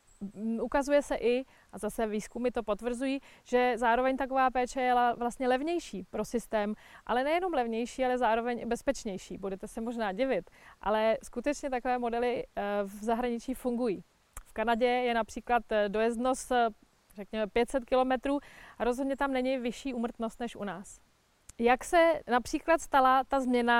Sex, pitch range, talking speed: female, 225-260 Hz, 145 wpm